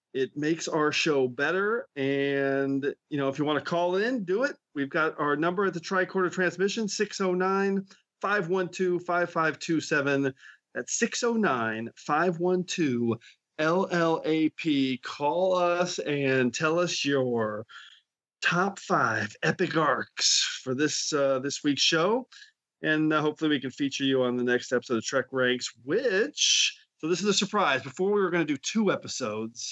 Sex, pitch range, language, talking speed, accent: male, 135-195 Hz, English, 145 wpm, American